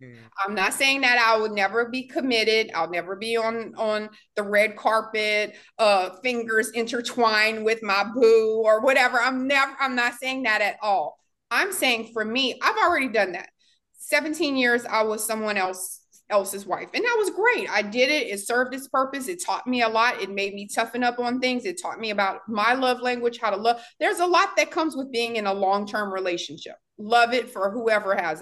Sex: female